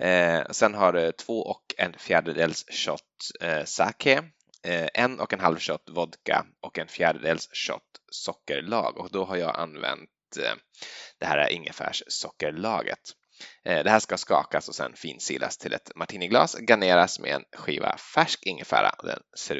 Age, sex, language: 10-29, male, Swedish